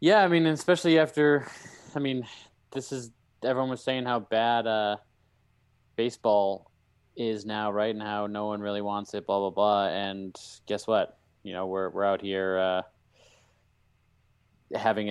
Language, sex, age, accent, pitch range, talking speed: English, male, 20-39, American, 95-115 Hz, 165 wpm